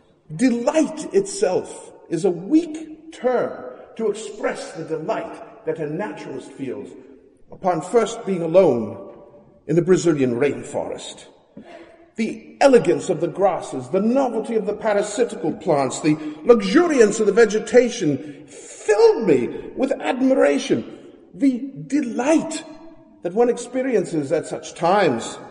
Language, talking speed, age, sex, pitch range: English, 120 wpm, 50-69, male, 195-280 Hz